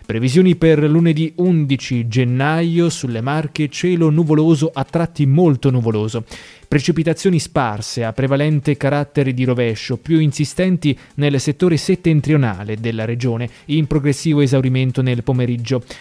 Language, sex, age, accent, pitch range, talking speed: Italian, male, 20-39, native, 125-160 Hz, 120 wpm